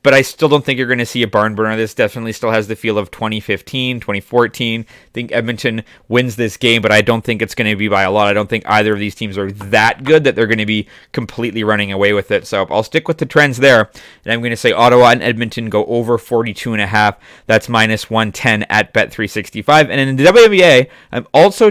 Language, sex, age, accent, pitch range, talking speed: English, male, 30-49, American, 110-140 Hz, 250 wpm